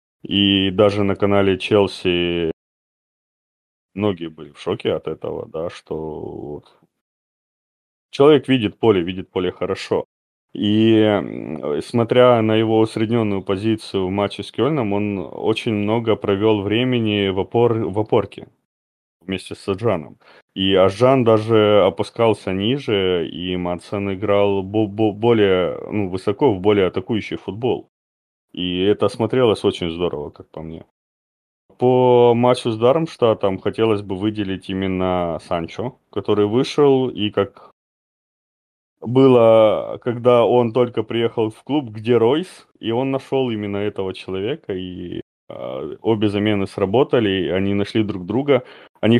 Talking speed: 125 wpm